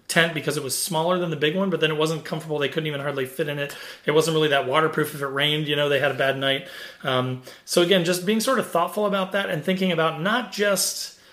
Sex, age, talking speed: male, 30-49, 270 wpm